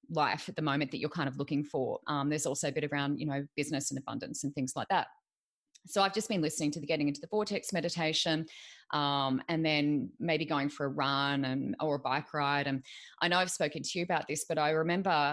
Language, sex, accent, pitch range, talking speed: English, female, Australian, 150-180 Hz, 240 wpm